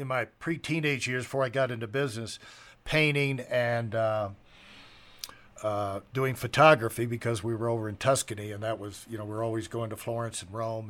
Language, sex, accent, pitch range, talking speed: English, male, American, 120-150 Hz, 185 wpm